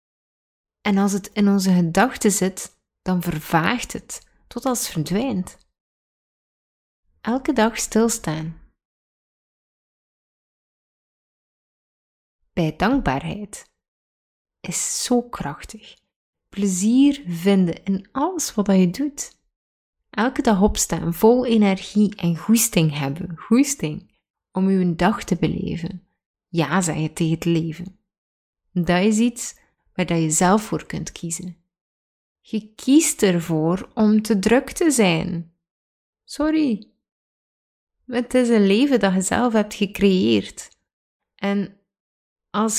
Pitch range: 175-240 Hz